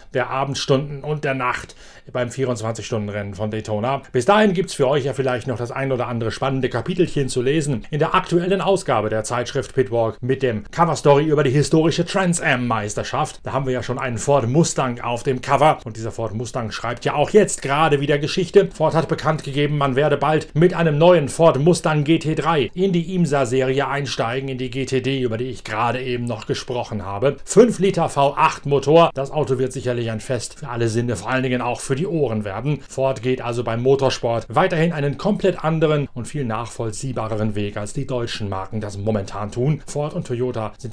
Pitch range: 115-145 Hz